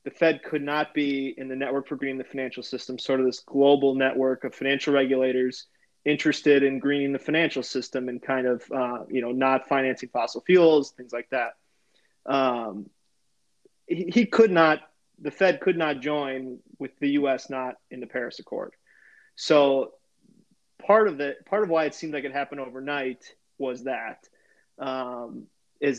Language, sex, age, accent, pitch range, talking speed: English, male, 20-39, American, 130-150 Hz, 175 wpm